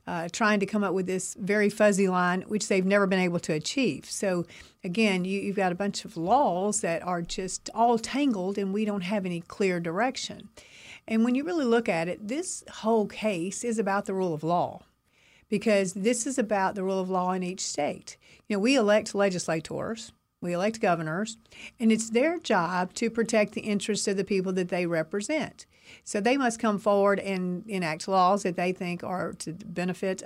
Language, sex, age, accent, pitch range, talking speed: English, female, 50-69, American, 185-225 Hz, 200 wpm